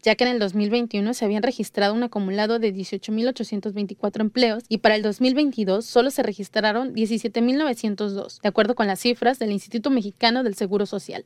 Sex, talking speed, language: female, 170 wpm, Spanish